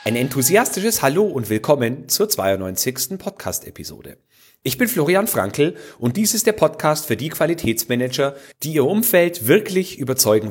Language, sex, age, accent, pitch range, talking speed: German, male, 40-59, German, 115-165 Hz, 145 wpm